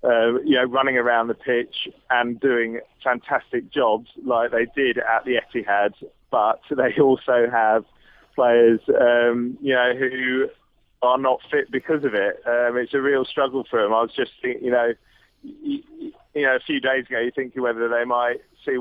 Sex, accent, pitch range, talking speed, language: male, British, 115-130 Hz, 185 wpm, English